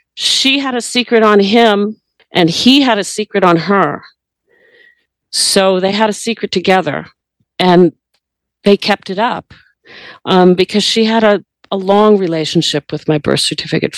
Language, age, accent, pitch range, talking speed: English, 50-69, American, 170-205 Hz, 155 wpm